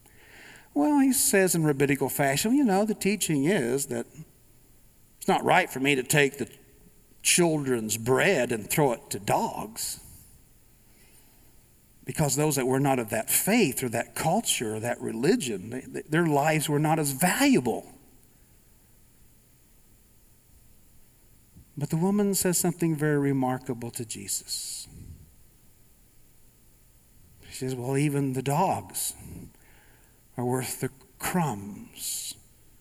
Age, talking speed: 50-69, 120 wpm